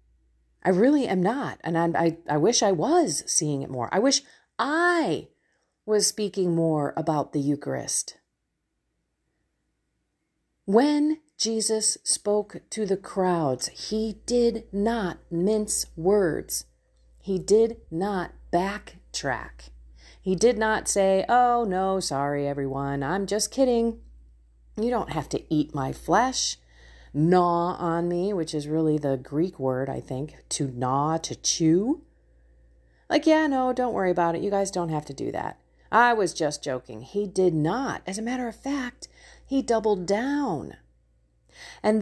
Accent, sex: American, female